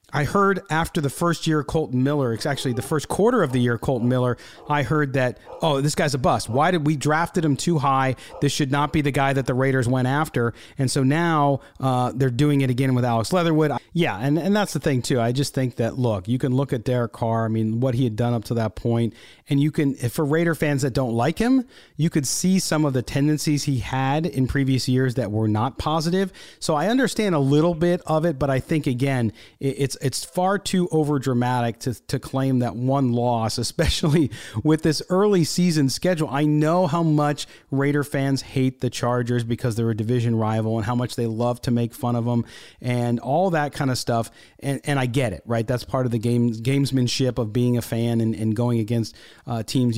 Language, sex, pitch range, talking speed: English, male, 120-150 Hz, 230 wpm